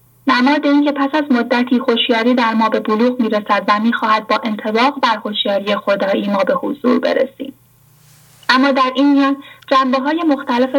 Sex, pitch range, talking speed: female, 210-265 Hz, 155 wpm